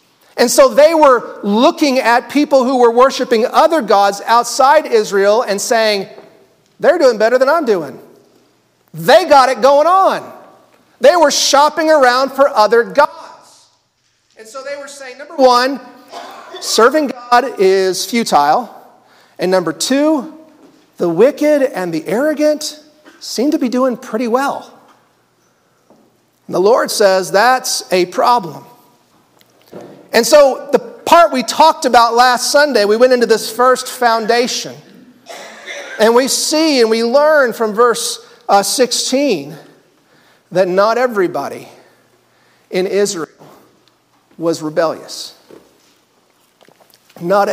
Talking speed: 125 wpm